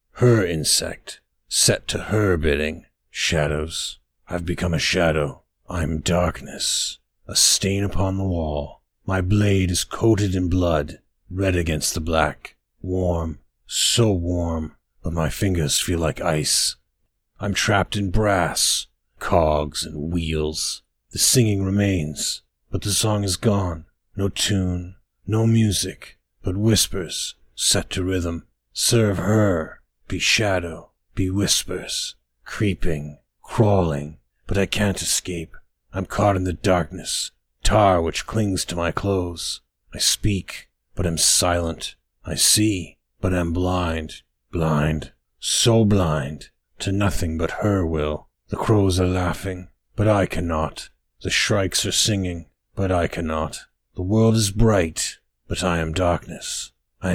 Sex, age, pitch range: male, 50-69, 80-100 Hz